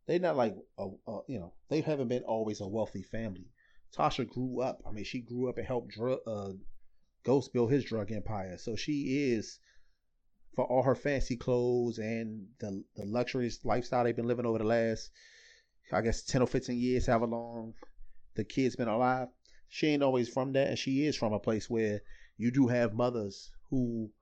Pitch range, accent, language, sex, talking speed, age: 110-135 Hz, American, English, male, 195 wpm, 30-49